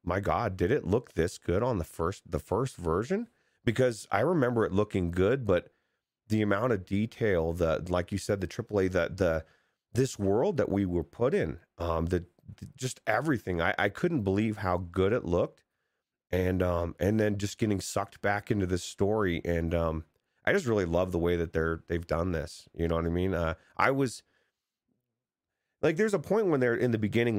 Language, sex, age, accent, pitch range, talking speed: English, male, 30-49, American, 85-105 Hz, 200 wpm